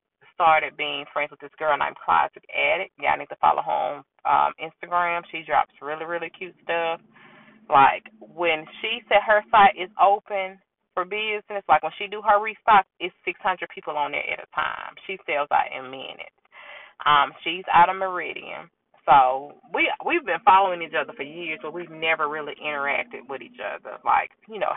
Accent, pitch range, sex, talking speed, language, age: American, 155-205 Hz, female, 190 wpm, English, 20-39